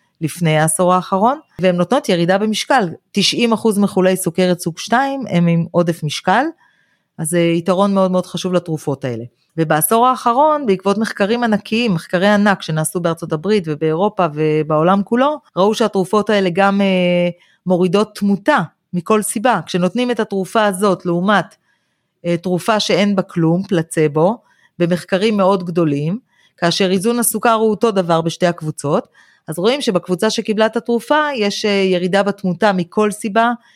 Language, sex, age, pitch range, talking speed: Hebrew, female, 30-49, 170-215 Hz, 130 wpm